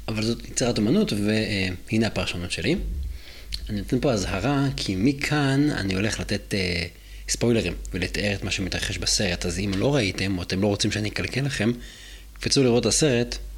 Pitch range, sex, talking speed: 95-125 Hz, male, 170 wpm